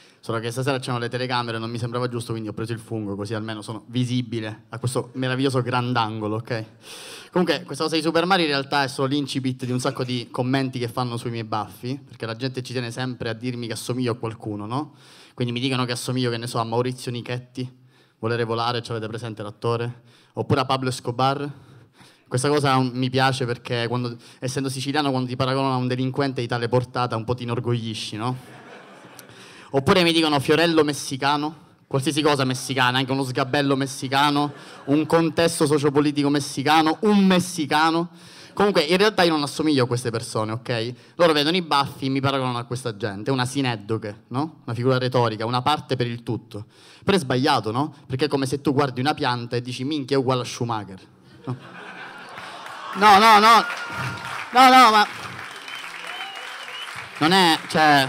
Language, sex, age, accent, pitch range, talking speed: Italian, male, 20-39, native, 120-145 Hz, 185 wpm